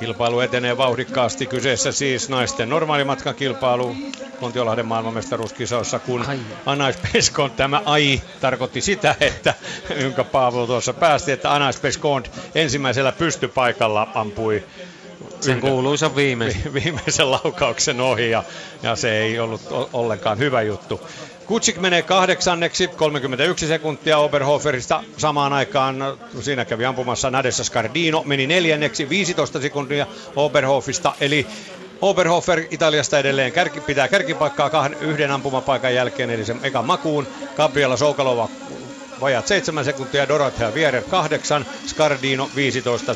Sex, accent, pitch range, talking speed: male, native, 120-150 Hz, 115 wpm